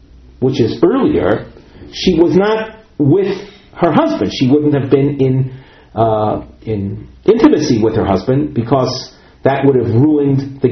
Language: English